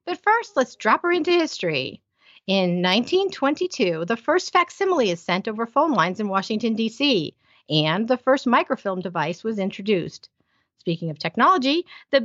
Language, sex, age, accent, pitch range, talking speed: English, female, 50-69, American, 185-280 Hz, 150 wpm